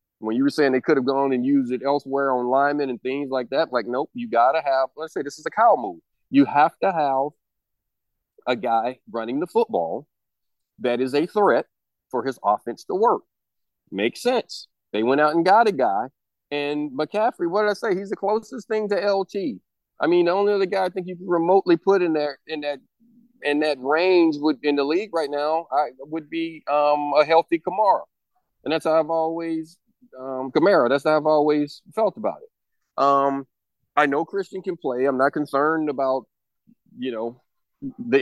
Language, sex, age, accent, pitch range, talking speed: English, male, 40-59, American, 135-185 Hz, 200 wpm